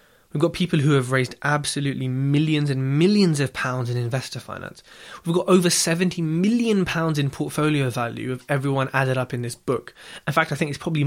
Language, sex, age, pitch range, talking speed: English, male, 20-39, 130-165 Hz, 195 wpm